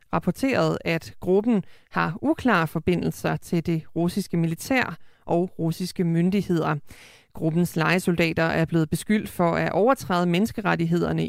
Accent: native